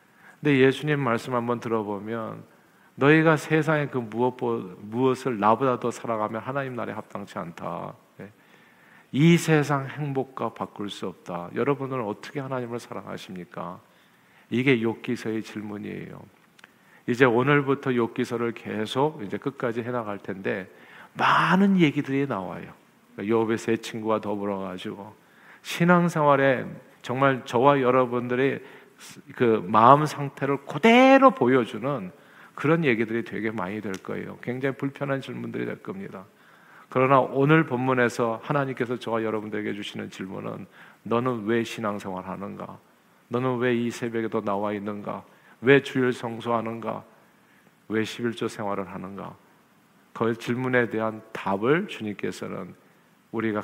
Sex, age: male, 50-69